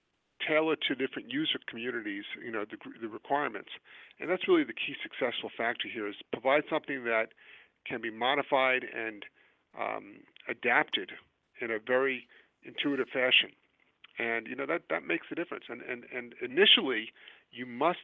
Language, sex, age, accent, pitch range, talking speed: English, male, 50-69, American, 115-145 Hz, 155 wpm